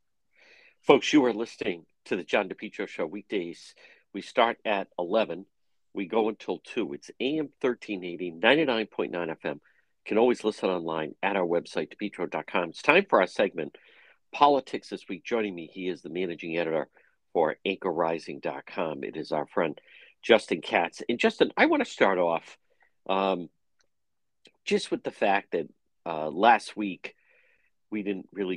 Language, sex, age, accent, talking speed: English, male, 50-69, American, 155 wpm